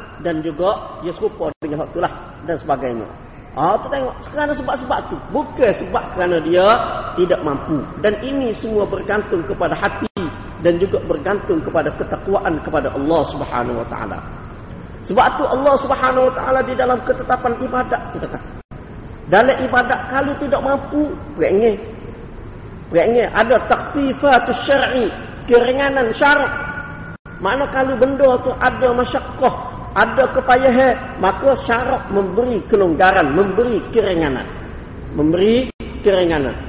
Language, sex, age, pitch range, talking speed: Malay, male, 40-59, 210-260 Hz, 130 wpm